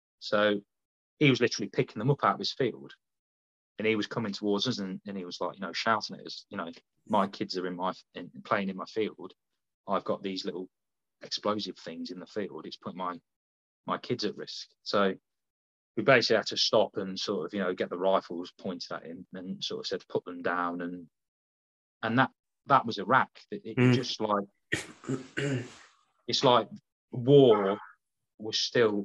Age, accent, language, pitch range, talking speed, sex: 30-49, British, English, 90-115 Hz, 195 wpm, male